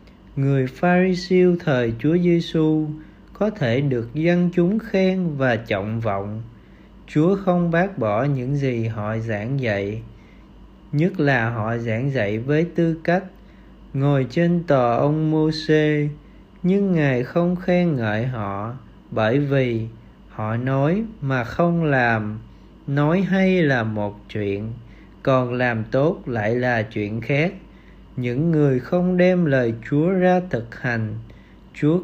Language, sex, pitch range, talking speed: Vietnamese, male, 115-170 Hz, 135 wpm